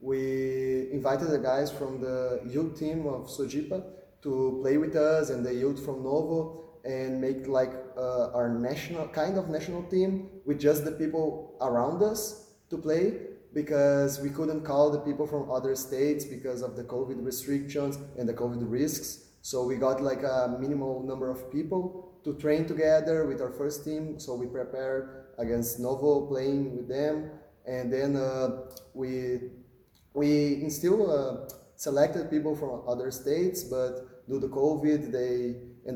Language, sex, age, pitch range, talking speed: English, male, 20-39, 125-150 Hz, 160 wpm